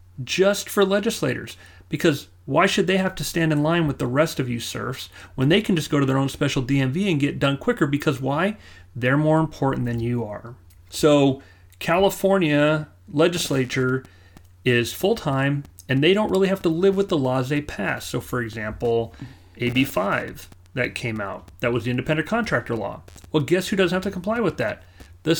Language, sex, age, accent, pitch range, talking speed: English, male, 30-49, American, 115-165 Hz, 190 wpm